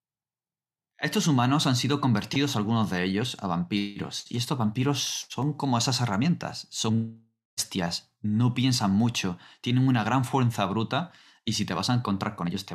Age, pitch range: 30-49, 95-130 Hz